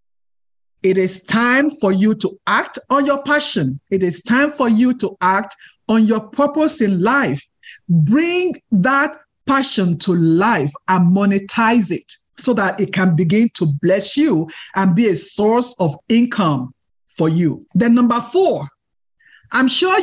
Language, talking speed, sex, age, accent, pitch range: English, 155 wpm, male, 50-69, Nigerian, 190-270 Hz